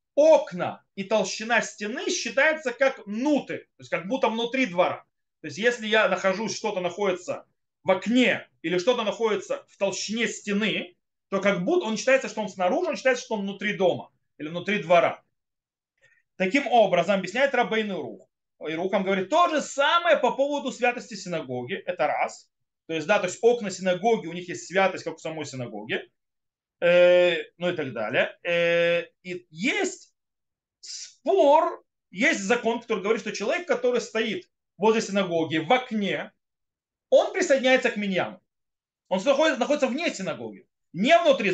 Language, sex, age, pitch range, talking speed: Russian, male, 30-49, 180-255 Hz, 155 wpm